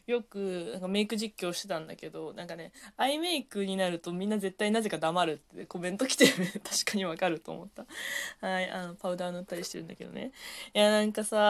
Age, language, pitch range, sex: 20-39, Japanese, 190-270 Hz, female